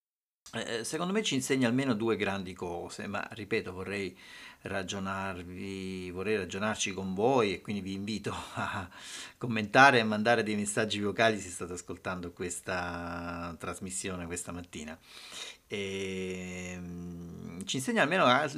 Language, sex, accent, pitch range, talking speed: Italian, male, native, 90-120 Hz, 125 wpm